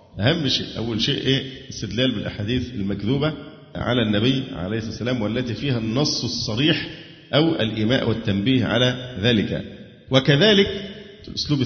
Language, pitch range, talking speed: Arabic, 110-140 Hz, 120 wpm